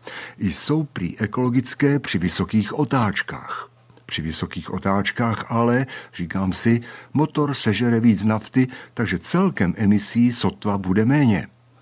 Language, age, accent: Czech, 60-79, native